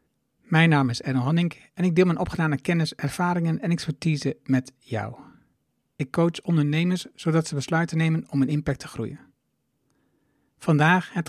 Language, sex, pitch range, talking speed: Dutch, male, 140-170 Hz, 160 wpm